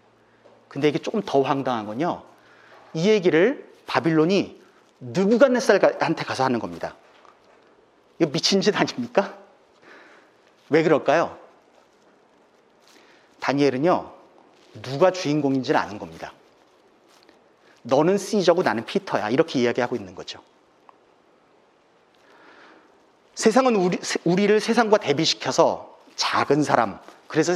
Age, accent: 40-59, native